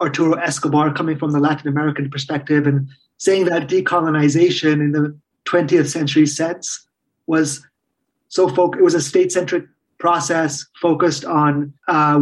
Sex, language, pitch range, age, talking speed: male, English, 150-180 Hz, 30-49, 140 wpm